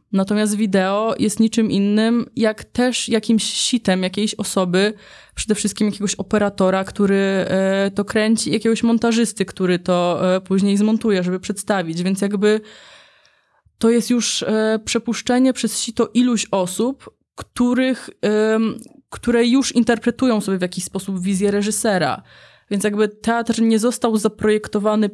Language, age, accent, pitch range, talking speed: Polish, 20-39, native, 185-220 Hz, 120 wpm